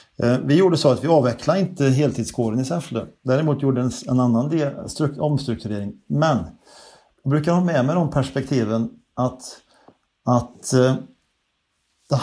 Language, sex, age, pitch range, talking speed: Swedish, male, 50-69, 115-140 Hz, 135 wpm